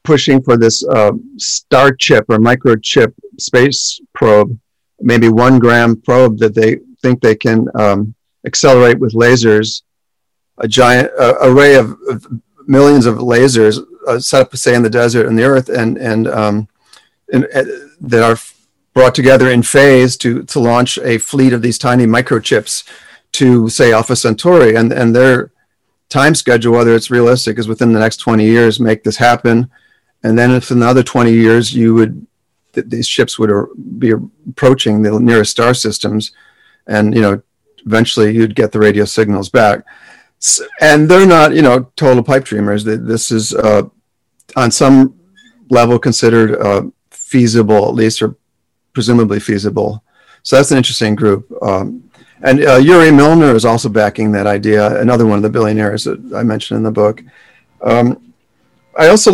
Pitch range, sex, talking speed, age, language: 110-130 Hz, male, 165 wpm, 50-69, English